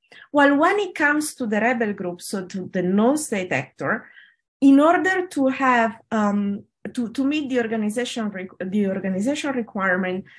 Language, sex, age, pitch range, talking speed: English, female, 20-39, 200-270 Hz, 155 wpm